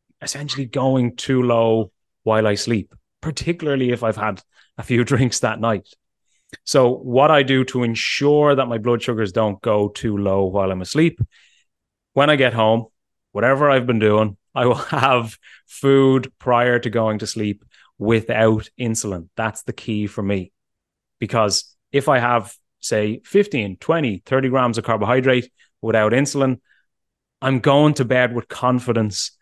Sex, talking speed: male, 155 wpm